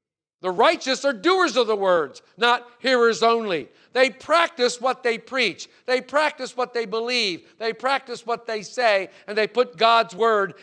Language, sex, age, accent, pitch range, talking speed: English, male, 50-69, American, 205-280 Hz, 170 wpm